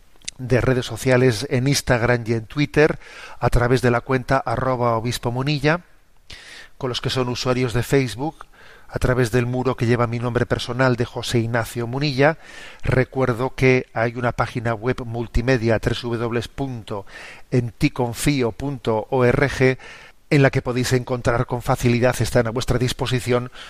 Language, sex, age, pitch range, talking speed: Spanish, male, 40-59, 120-130 Hz, 140 wpm